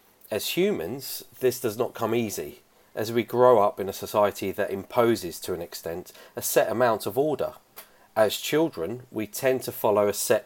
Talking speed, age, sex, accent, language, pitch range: 185 wpm, 40-59, male, British, English, 105-140 Hz